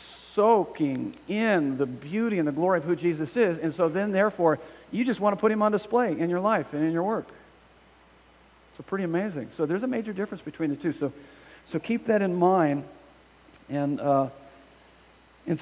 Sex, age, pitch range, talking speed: male, 50-69, 150-205 Hz, 190 wpm